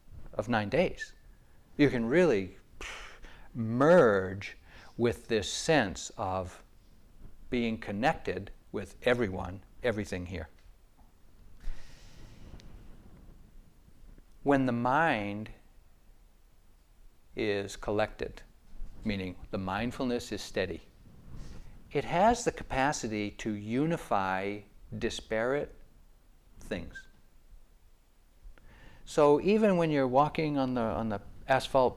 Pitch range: 95-135 Hz